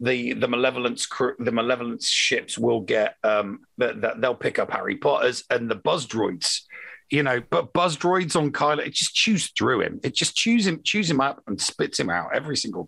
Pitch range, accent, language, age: 110-155 Hz, British, English, 50-69